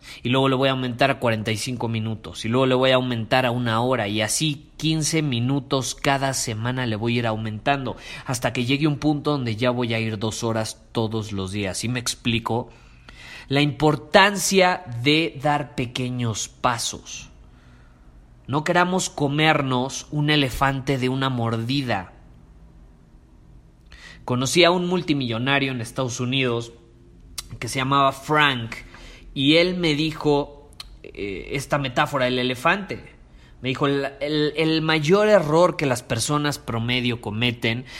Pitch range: 110-140 Hz